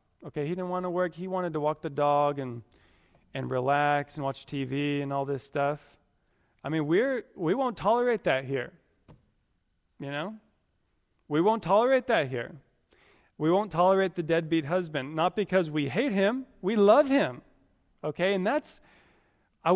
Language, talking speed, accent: English, 165 wpm, American